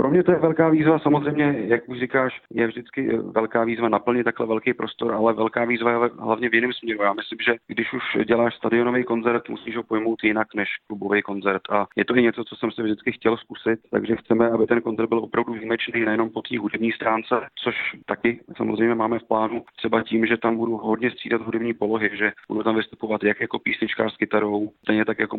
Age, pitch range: 40-59, 105-115 Hz